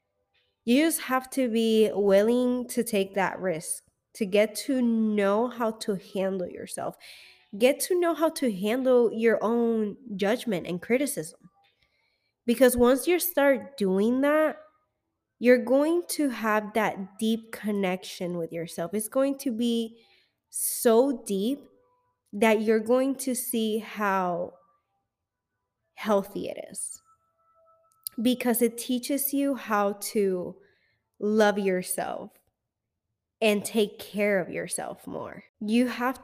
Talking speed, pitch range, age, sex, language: 125 wpm, 190-245 Hz, 20-39, female, English